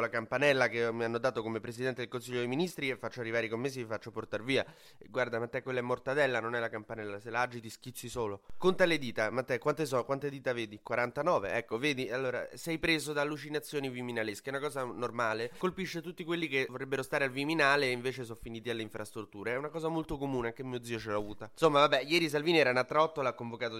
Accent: native